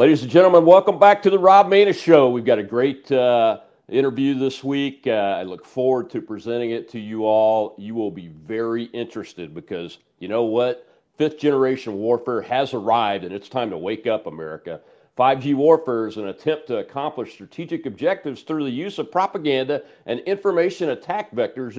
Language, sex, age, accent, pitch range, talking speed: English, male, 40-59, American, 125-195 Hz, 185 wpm